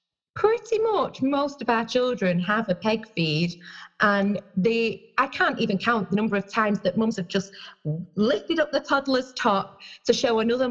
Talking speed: 175 wpm